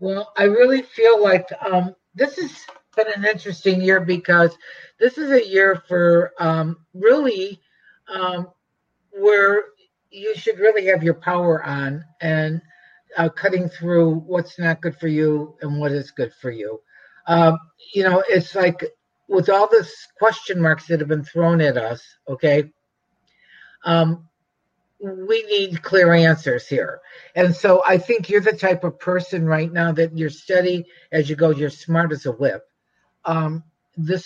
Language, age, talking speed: English, 50-69, 160 wpm